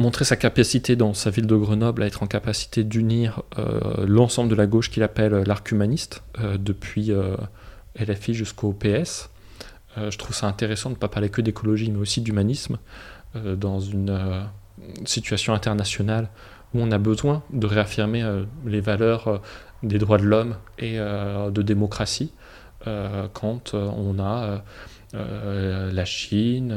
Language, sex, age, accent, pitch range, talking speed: French, male, 20-39, French, 100-115 Hz, 165 wpm